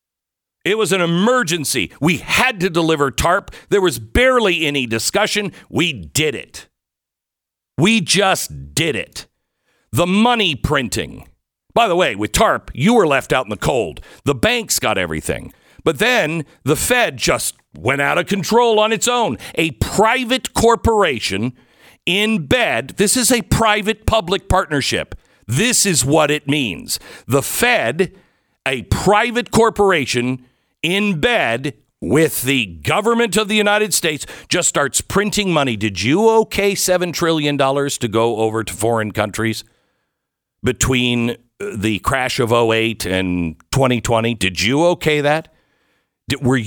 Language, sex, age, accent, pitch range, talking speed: English, male, 50-69, American, 125-210 Hz, 140 wpm